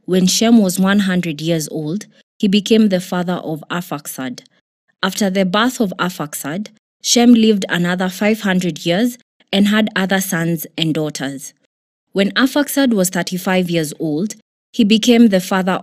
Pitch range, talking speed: 170-220 Hz, 145 wpm